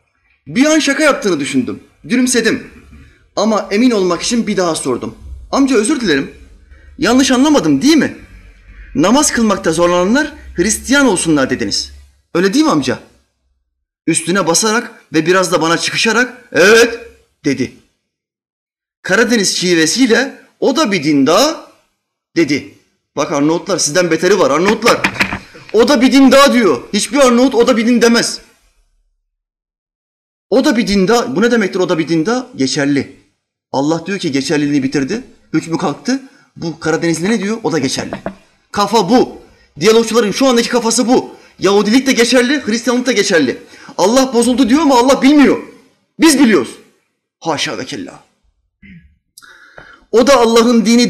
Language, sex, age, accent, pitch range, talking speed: Turkish, male, 30-49, native, 170-265 Hz, 140 wpm